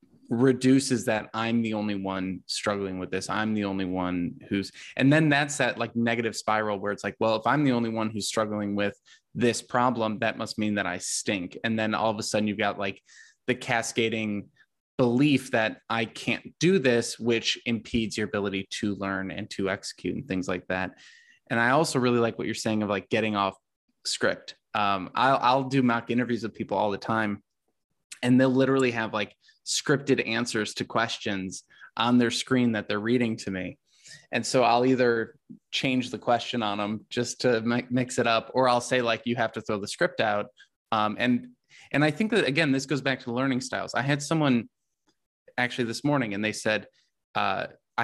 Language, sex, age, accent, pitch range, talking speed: English, male, 20-39, American, 105-125 Hz, 200 wpm